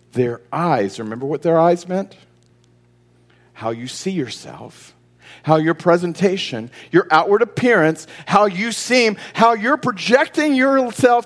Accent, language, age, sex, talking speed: American, English, 40-59, male, 130 wpm